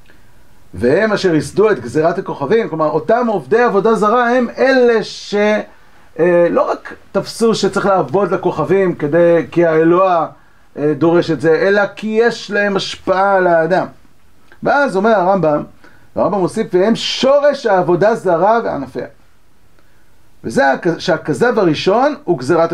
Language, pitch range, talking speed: Hebrew, 160-210 Hz, 125 wpm